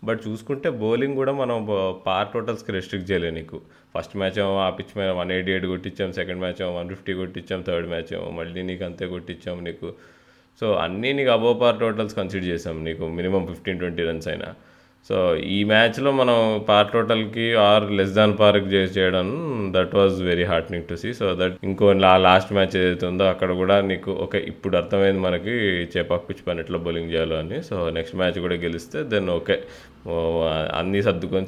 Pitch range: 95-130 Hz